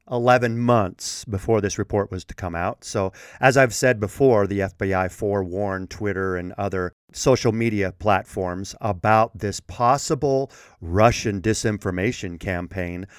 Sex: male